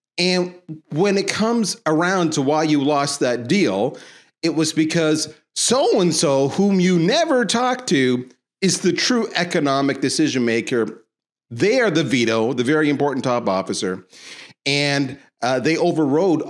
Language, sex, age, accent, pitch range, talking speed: English, male, 40-59, American, 115-175 Hz, 140 wpm